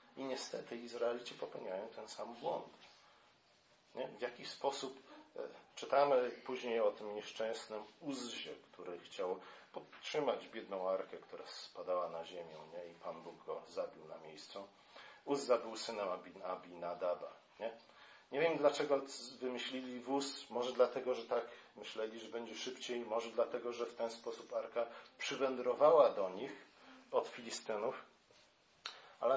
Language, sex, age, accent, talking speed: Polish, male, 40-59, native, 135 wpm